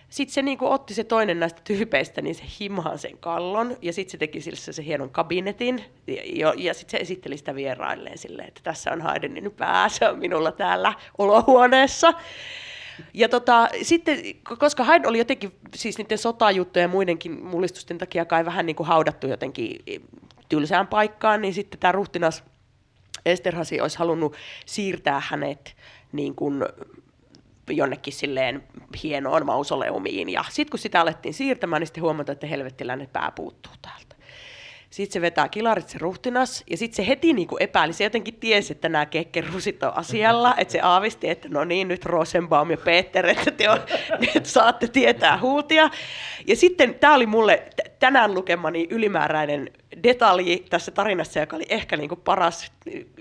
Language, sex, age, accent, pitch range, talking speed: Finnish, female, 30-49, native, 170-245 Hz, 160 wpm